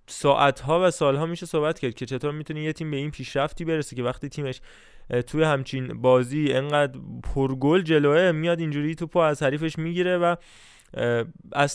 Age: 20-39